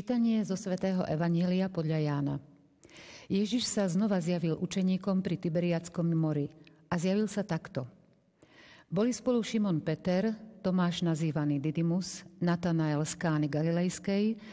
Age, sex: 50-69, female